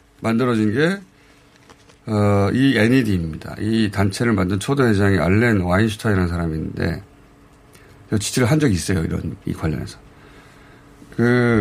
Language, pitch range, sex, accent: Korean, 100-140 Hz, male, native